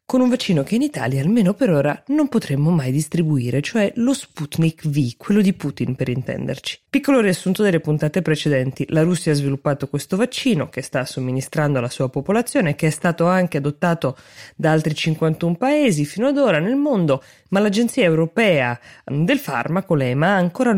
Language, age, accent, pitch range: Italian, 20-39, native, 145-185 Hz